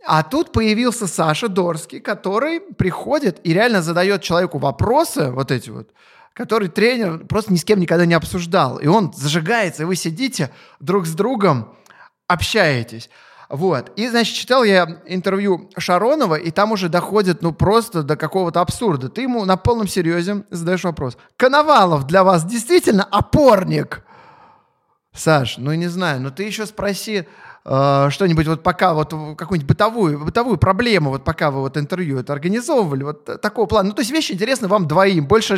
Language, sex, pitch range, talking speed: Russian, male, 160-210 Hz, 160 wpm